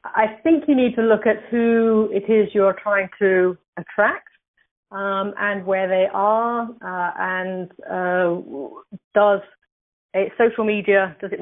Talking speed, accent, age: 145 wpm, British, 40-59